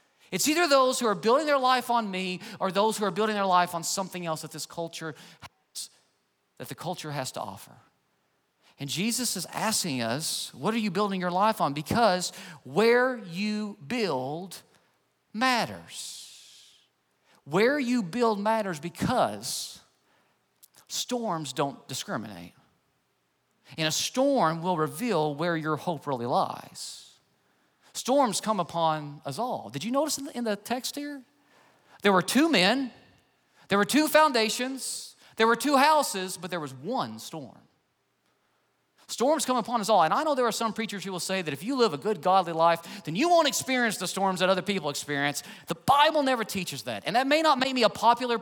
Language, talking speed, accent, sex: English, 175 wpm, American, male